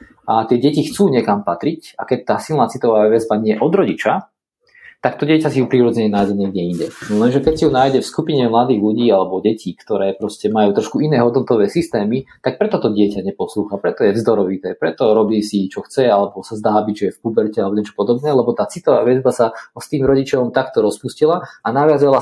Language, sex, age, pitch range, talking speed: Slovak, male, 20-39, 105-150 Hz, 215 wpm